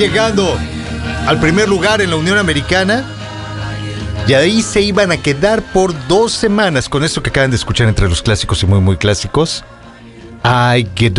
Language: English